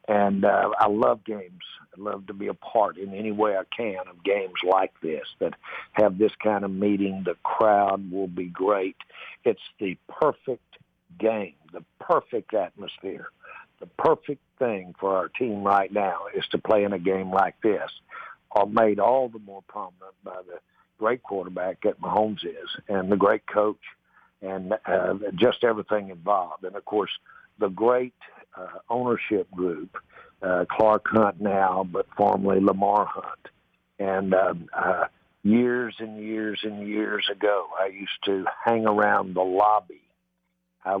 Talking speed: 160 wpm